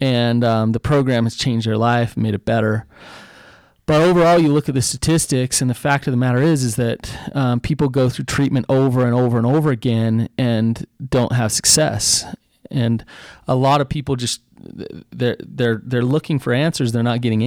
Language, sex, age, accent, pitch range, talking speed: English, male, 30-49, American, 115-140 Hz, 195 wpm